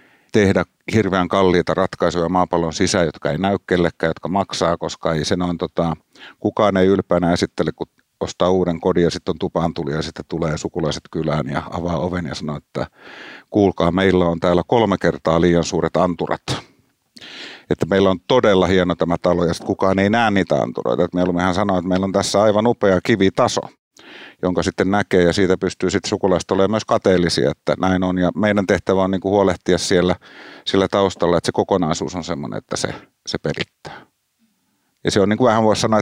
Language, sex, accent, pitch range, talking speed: Finnish, male, native, 85-100 Hz, 185 wpm